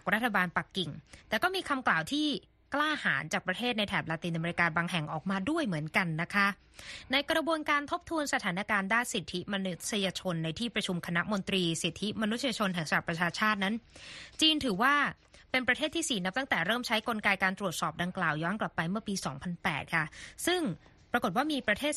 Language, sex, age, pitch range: Thai, female, 20-39, 185-245 Hz